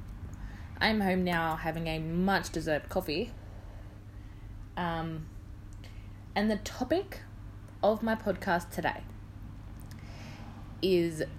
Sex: female